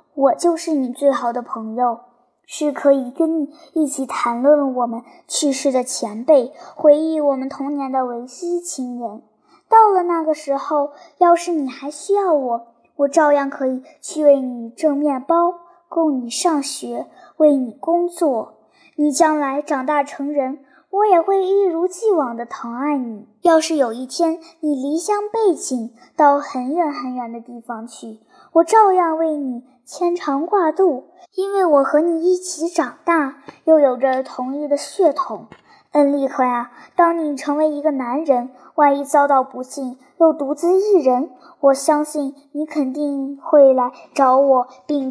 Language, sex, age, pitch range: Chinese, male, 10-29, 265-330 Hz